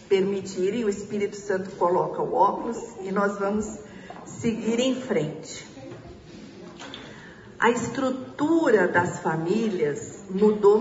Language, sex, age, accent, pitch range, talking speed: Portuguese, female, 50-69, Brazilian, 180-225 Hz, 100 wpm